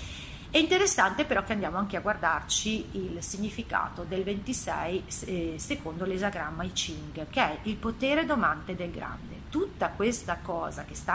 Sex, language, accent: female, Italian, native